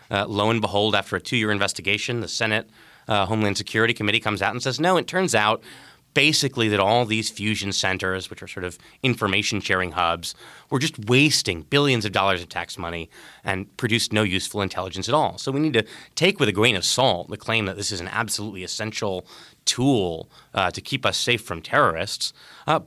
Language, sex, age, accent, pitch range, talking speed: English, male, 30-49, American, 95-120 Hz, 200 wpm